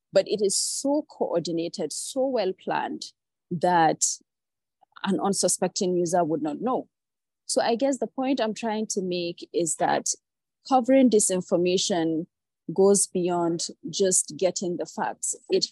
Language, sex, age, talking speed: English, female, 30-49, 135 wpm